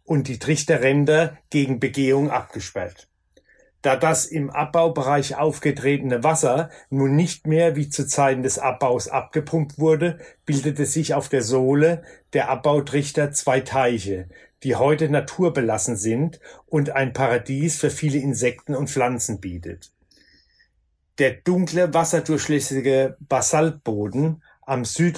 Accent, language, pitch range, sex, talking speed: German, German, 125-155 Hz, male, 120 wpm